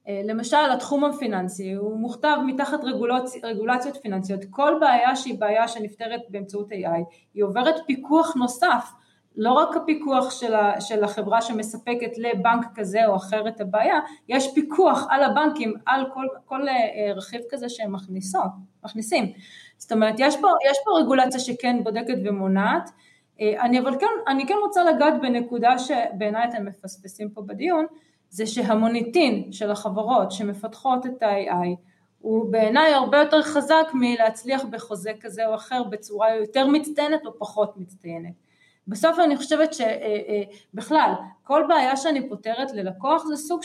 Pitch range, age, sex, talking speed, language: 210-280 Hz, 20-39, female, 140 wpm, Hebrew